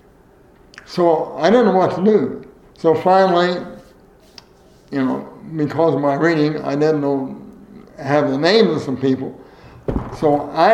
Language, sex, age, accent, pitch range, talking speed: English, male, 60-79, American, 140-170 Hz, 145 wpm